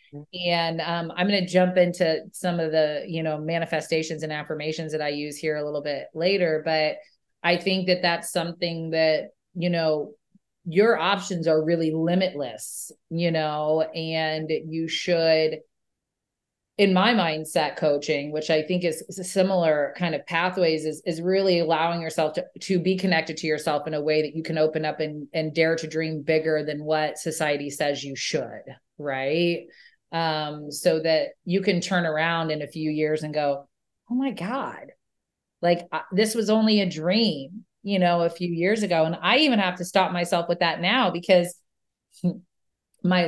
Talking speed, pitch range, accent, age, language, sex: 180 wpm, 155-180 Hz, American, 30-49, English, female